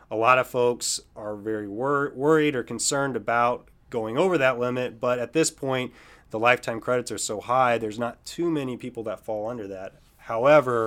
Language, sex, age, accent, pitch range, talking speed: English, male, 30-49, American, 110-125 Hz, 195 wpm